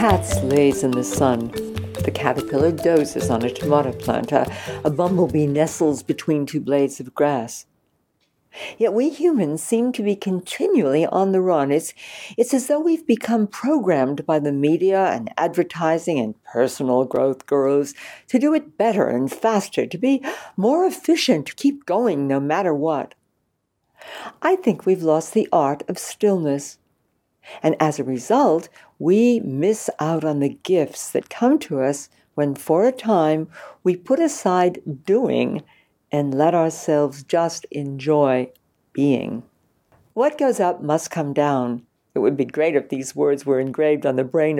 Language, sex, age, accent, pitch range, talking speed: English, female, 60-79, American, 140-220 Hz, 155 wpm